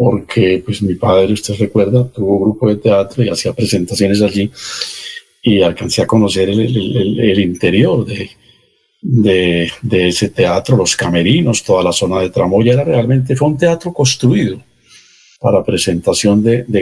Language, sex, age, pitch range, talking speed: Spanish, male, 50-69, 95-115 Hz, 165 wpm